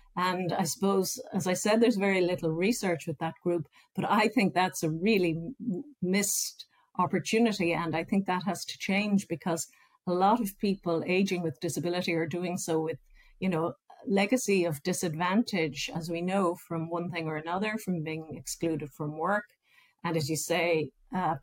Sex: female